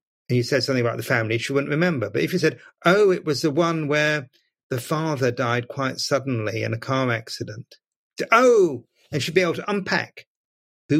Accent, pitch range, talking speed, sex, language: British, 125-165 Hz, 205 wpm, male, English